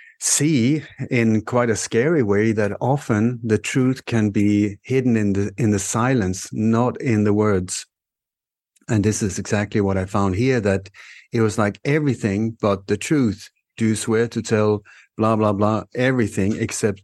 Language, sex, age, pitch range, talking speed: English, male, 60-79, 100-115 Hz, 170 wpm